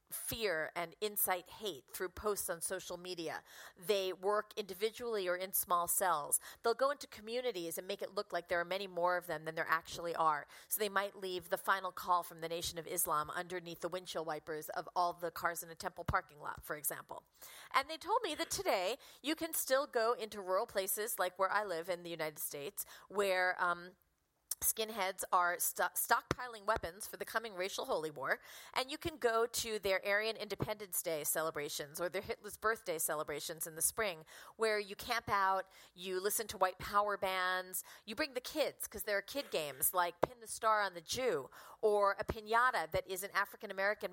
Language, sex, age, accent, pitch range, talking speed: English, female, 40-59, American, 175-220 Hz, 200 wpm